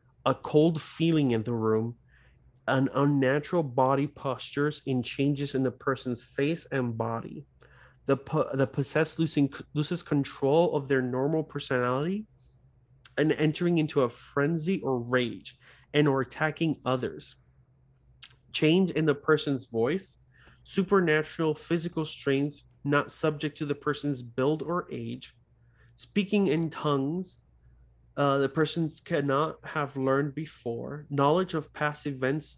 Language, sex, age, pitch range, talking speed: English, male, 30-49, 125-155 Hz, 125 wpm